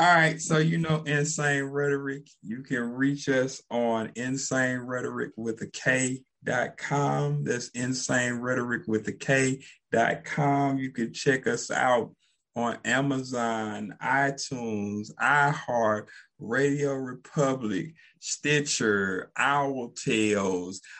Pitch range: 130-165 Hz